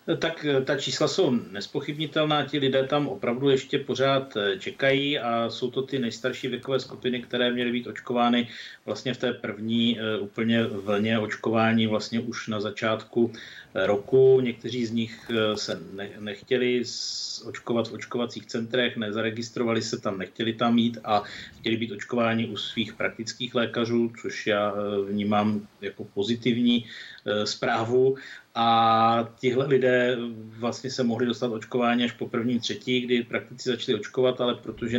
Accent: native